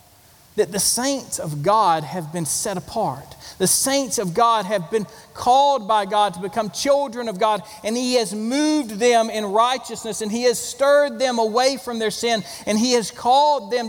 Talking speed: 190 wpm